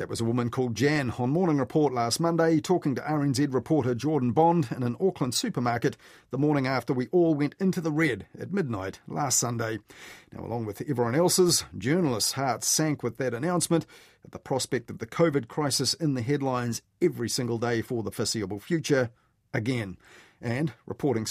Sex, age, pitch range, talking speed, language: male, 40-59, 115-155 Hz, 185 wpm, English